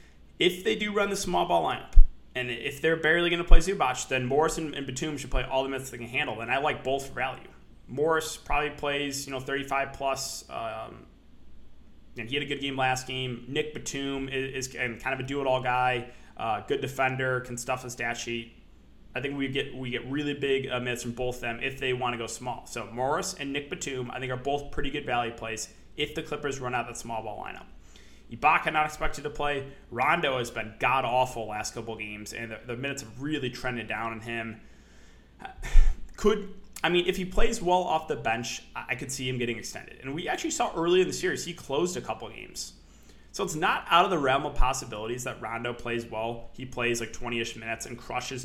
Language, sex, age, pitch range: English, male, 20-39, 120-145 Hz